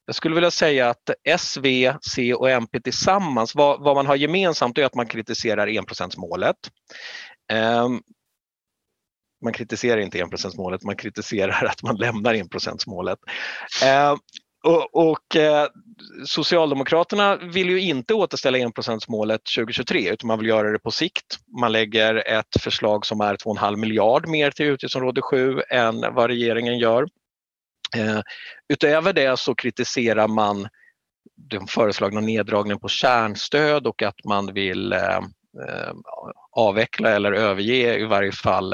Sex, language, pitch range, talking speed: male, Swedish, 110-145 Hz, 140 wpm